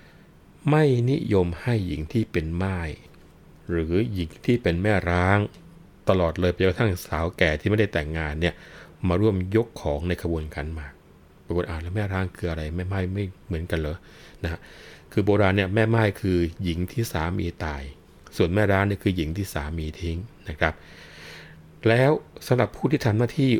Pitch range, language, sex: 80-100 Hz, Thai, male